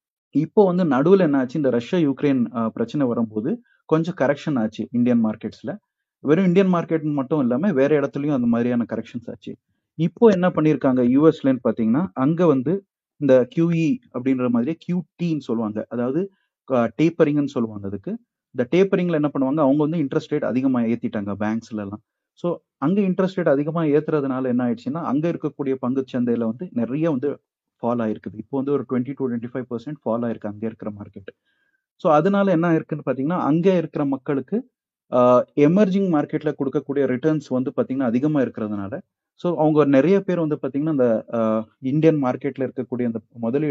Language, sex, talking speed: Tamil, male, 75 wpm